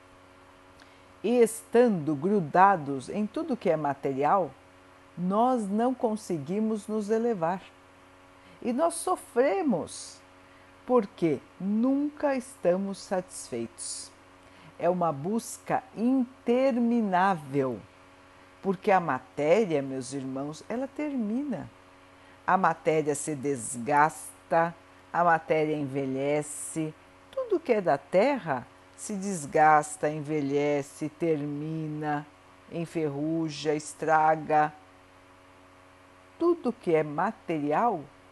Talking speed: 85 wpm